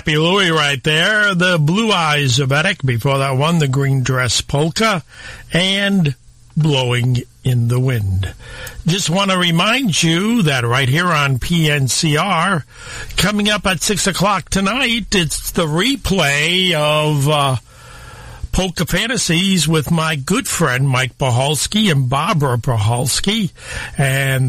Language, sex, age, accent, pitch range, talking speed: English, male, 50-69, American, 130-170 Hz, 130 wpm